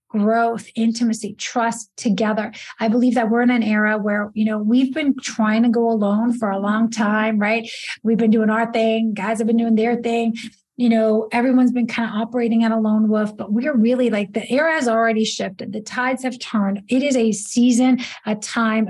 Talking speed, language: 210 wpm, English